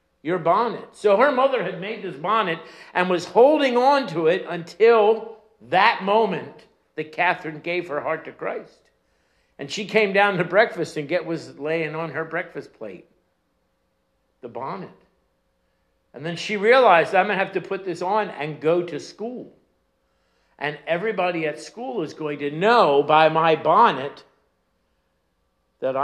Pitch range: 155-215 Hz